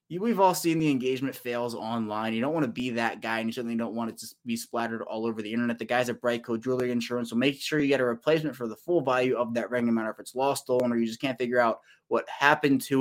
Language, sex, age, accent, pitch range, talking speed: English, male, 20-39, American, 120-150 Hz, 275 wpm